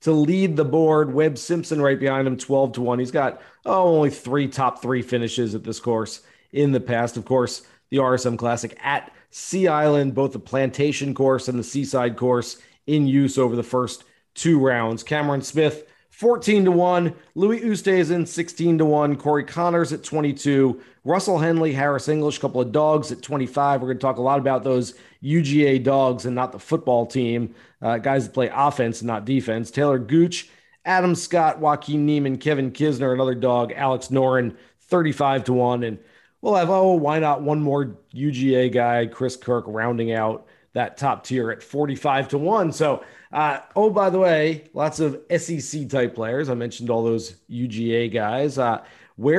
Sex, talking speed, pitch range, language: male, 185 wpm, 130-170 Hz, English